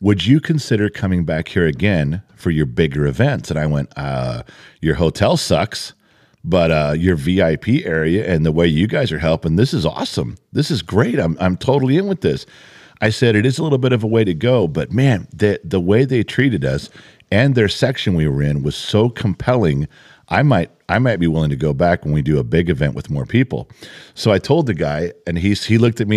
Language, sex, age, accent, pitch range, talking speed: English, male, 50-69, American, 75-105 Hz, 230 wpm